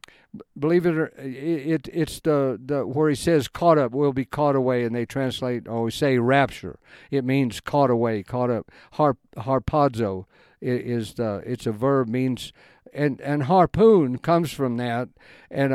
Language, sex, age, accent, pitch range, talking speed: English, male, 50-69, American, 125-155 Hz, 165 wpm